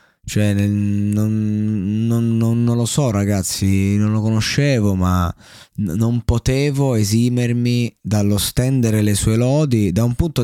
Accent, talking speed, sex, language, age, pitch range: native, 140 wpm, male, Italian, 20-39, 95-115 Hz